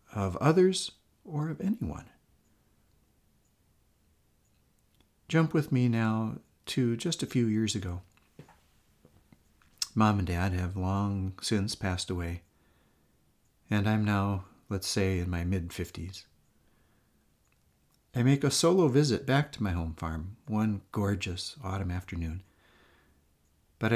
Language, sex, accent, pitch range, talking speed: English, male, American, 95-120 Hz, 115 wpm